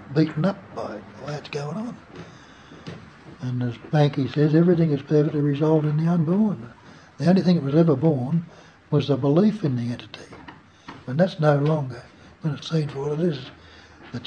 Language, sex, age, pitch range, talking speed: English, male, 60-79, 135-165 Hz, 185 wpm